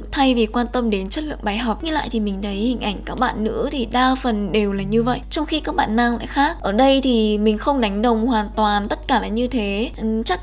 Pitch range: 210-255 Hz